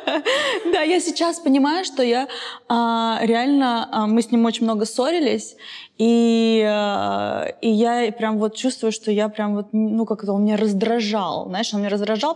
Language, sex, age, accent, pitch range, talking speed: Russian, female, 20-39, native, 200-235 Hz, 175 wpm